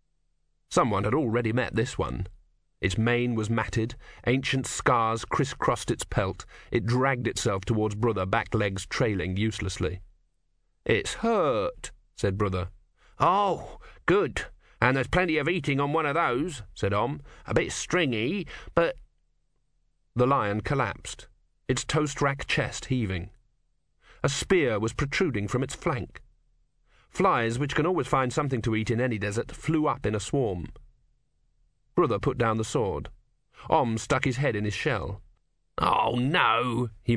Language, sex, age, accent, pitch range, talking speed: English, male, 40-59, British, 110-145 Hz, 145 wpm